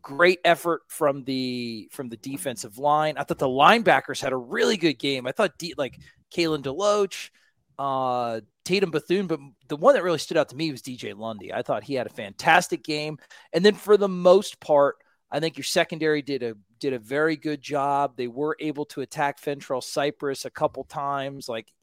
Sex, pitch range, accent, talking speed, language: male, 130-155 Hz, American, 200 wpm, English